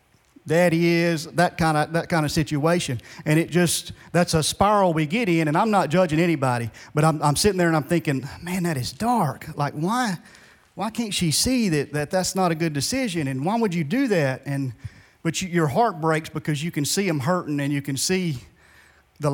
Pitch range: 140-175 Hz